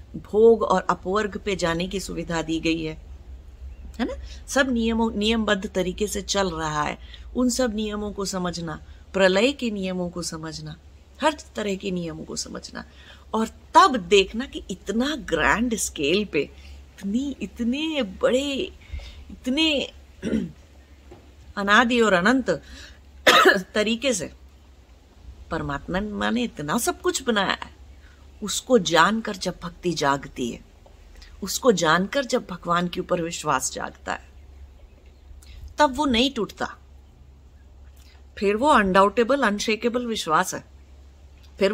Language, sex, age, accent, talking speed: English, female, 30-49, Indian, 125 wpm